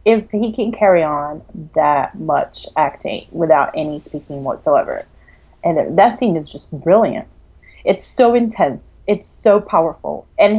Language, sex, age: English, female, 30-49